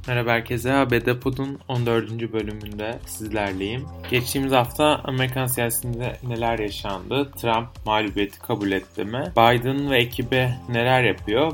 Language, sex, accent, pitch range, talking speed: Turkish, male, native, 110-135 Hz, 120 wpm